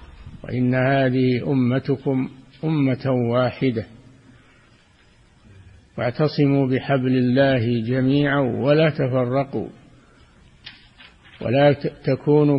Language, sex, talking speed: Arabic, male, 60 wpm